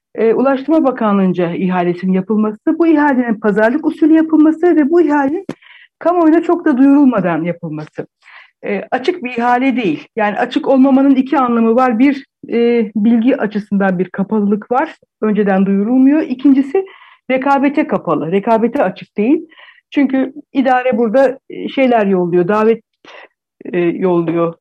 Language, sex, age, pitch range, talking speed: Turkish, female, 60-79, 200-280 Hz, 125 wpm